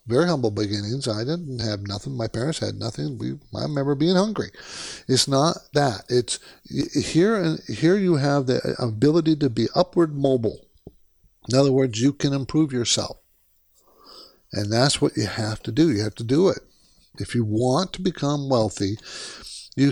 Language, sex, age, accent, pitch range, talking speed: English, male, 50-69, American, 120-160 Hz, 170 wpm